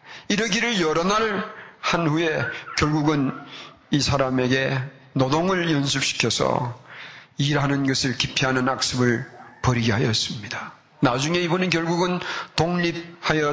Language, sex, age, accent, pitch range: Korean, male, 40-59, native, 140-195 Hz